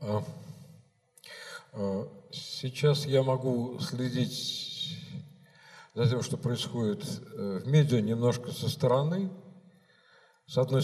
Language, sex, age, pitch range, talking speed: Russian, male, 50-69, 120-165 Hz, 85 wpm